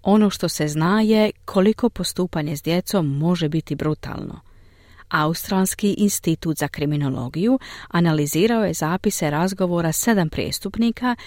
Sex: female